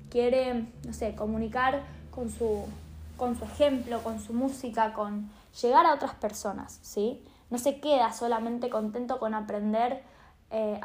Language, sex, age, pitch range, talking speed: Spanish, female, 10-29, 225-275 Hz, 140 wpm